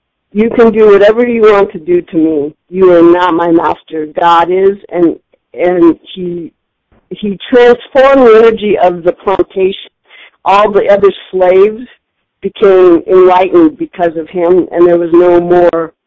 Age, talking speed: 50-69, 155 wpm